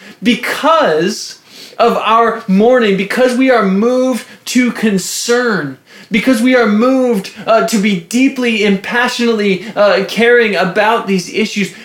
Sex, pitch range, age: male, 205-240 Hz, 20-39